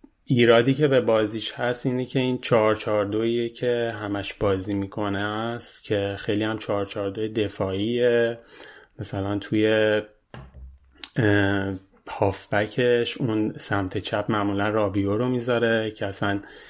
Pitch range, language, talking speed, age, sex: 105-120 Hz, Persian, 120 wpm, 30-49, male